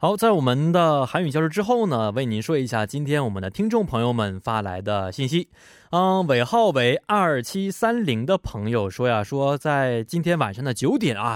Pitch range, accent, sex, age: 110-160 Hz, Chinese, male, 20-39